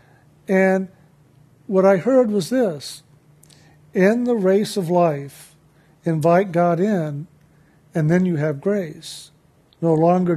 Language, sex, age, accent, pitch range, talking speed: English, male, 50-69, American, 160-195 Hz, 120 wpm